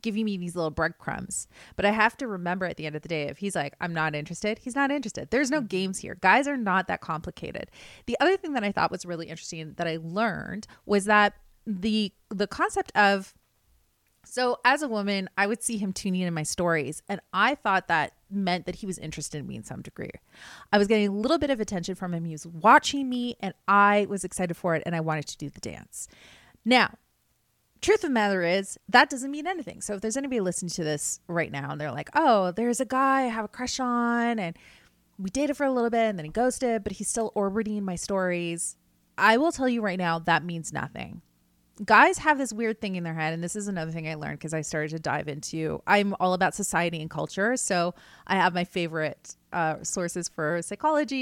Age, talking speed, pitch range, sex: 30-49, 230 wpm, 165-225 Hz, female